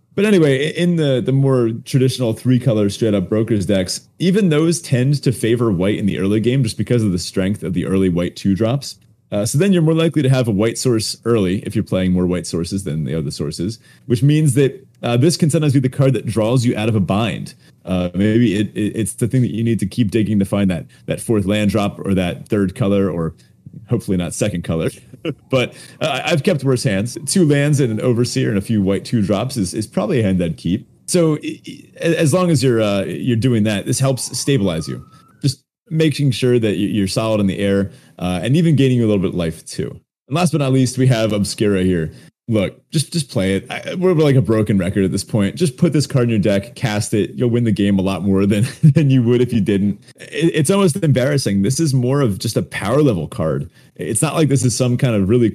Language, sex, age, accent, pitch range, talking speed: English, male, 30-49, American, 100-140 Hz, 245 wpm